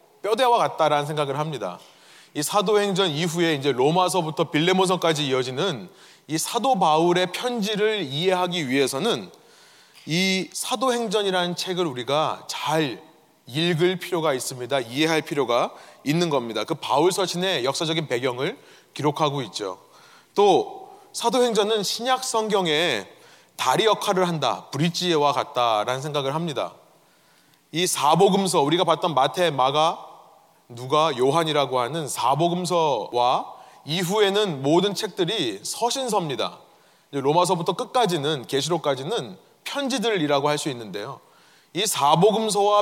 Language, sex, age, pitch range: Korean, male, 30-49, 155-215 Hz